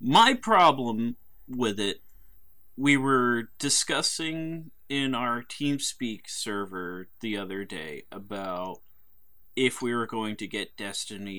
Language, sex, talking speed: English, male, 115 wpm